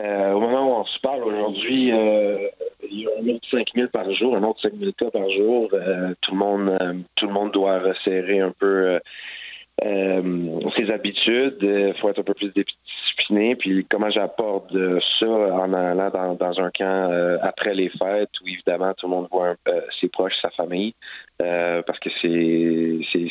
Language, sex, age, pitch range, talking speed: French, male, 30-49, 90-100 Hz, 205 wpm